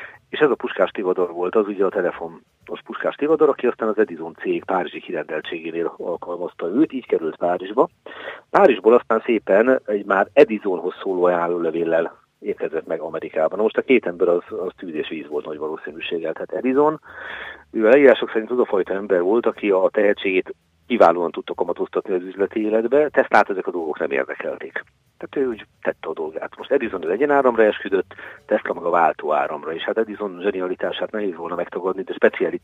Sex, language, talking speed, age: male, Hungarian, 175 wpm, 40-59